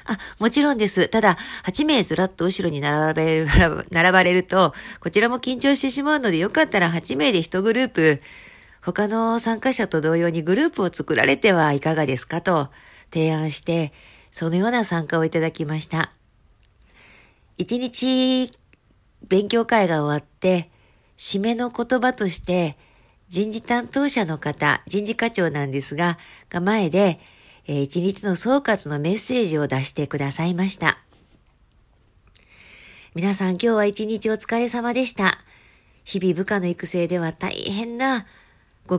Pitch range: 160-215 Hz